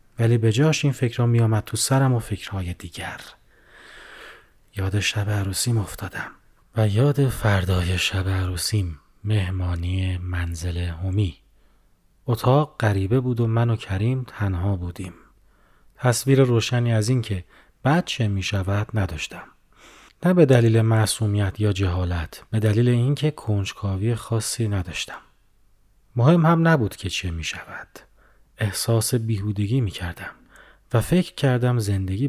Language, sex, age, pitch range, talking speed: Persian, male, 30-49, 95-120 Hz, 125 wpm